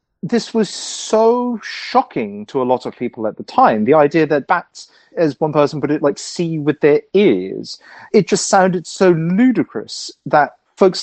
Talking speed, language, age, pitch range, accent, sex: 180 wpm, English, 30-49, 135-200 Hz, British, male